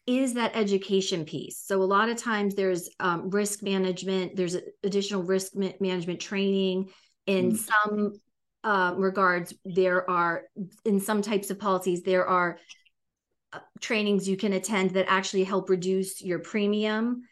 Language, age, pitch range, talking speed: English, 40-59, 175-205 Hz, 140 wpm